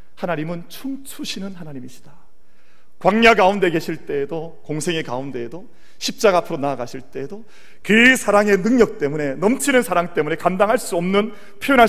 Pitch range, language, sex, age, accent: 120-200 Hz, Korean, male, 40-59, native